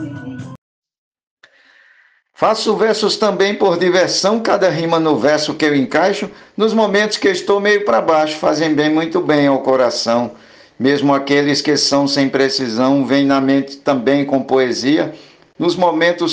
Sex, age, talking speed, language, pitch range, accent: male, 60-79, 145 wpm, Portuguese, 115-150 Hz, Brazilian